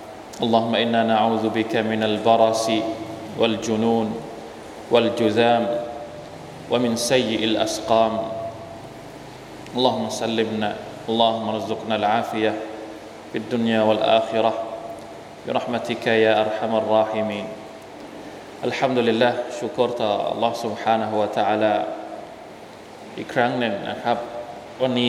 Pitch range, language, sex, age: 110-120 Hz, Thai, male, 20-39